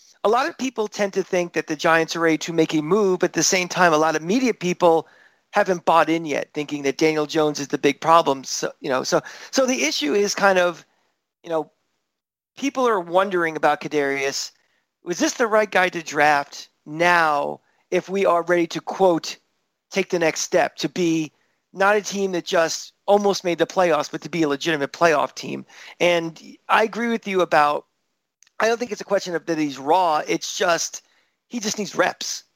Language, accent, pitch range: English, American, 160-205 Hz